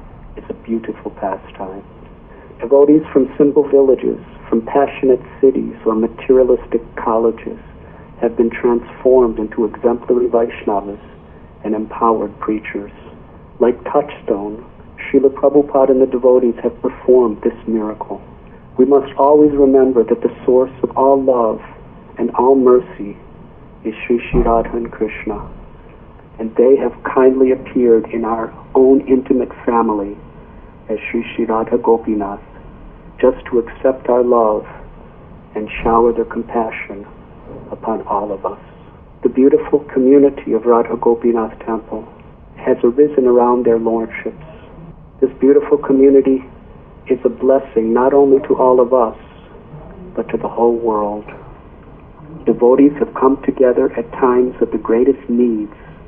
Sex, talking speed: male, 130 wpm